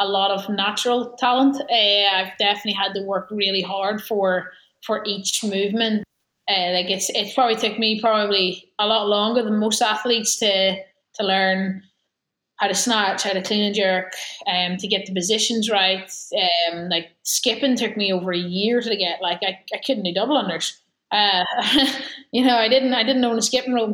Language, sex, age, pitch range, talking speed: English, female, 20-39, 200-240 Hz, 190 wpm